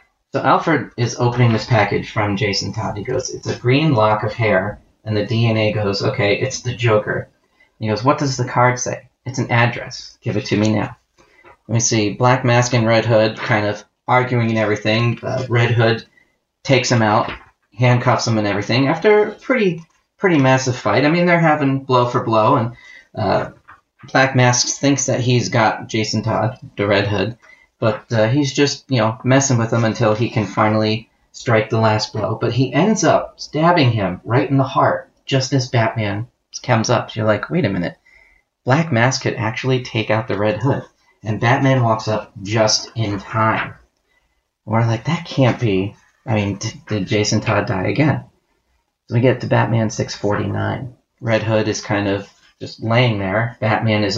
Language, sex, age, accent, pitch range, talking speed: English, male, 30-49, American, 105-130 Hz, 190 wpm